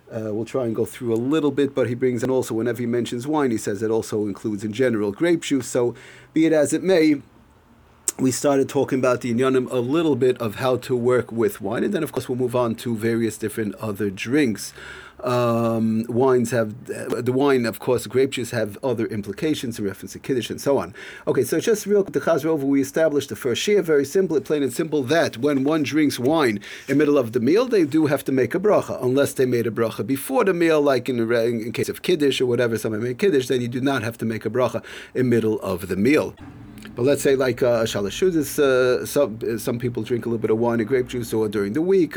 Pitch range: 115-145 Hz